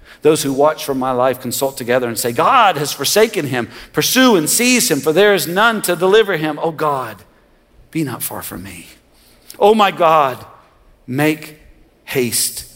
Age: 50-69